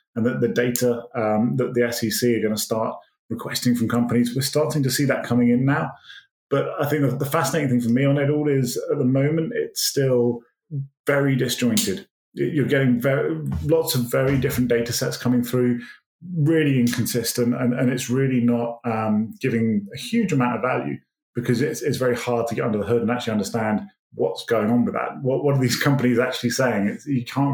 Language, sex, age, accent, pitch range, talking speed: English, male, 20-39, British, 120-140 Hz, 210 wpm